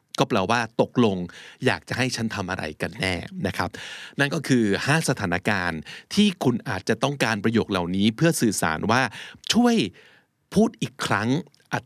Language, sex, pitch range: Thai, male, 105-140 Hz